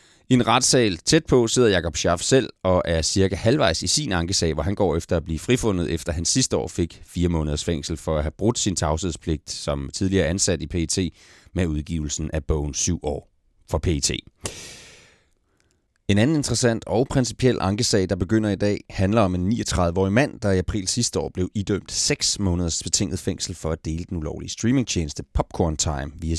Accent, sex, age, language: native, male, 30-49, Danish